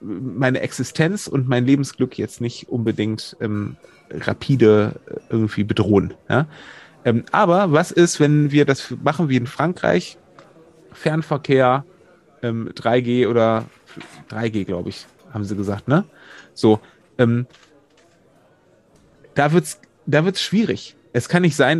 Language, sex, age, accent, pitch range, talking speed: German, male, 30-49, German, 125-155 Hz, 130 wpm